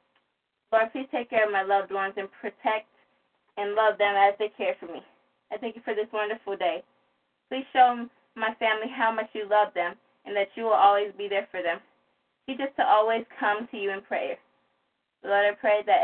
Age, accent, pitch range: 20-39, American, 195-220 Hz